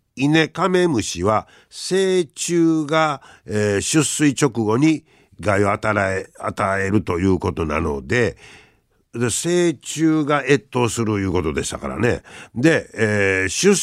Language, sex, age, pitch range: Japanese, male, 50-69, 105-160 Hz